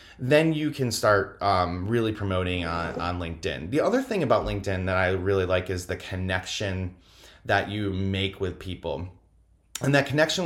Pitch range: 95-125 Hz